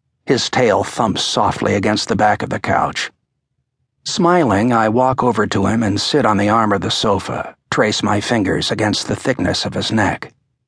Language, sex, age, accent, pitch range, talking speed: English, male, 60-79, American, 110-130 Hz, 185 wpm